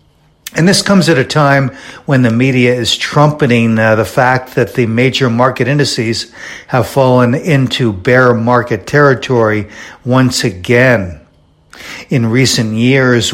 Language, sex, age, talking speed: English, male, 60-79, 135 wpm